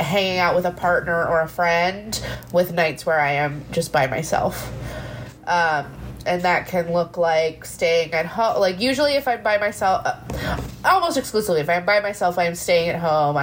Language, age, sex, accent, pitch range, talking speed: English, 20-39, female, American, 155-185 Hz, 190 wpm